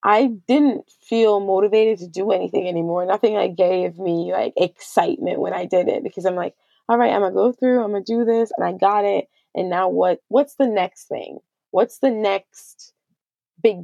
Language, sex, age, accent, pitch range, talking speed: English, female, 20-39, American, 185-220 Hz, 200 wpm